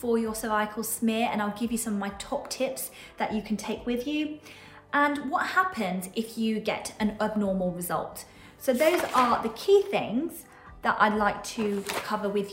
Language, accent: English, British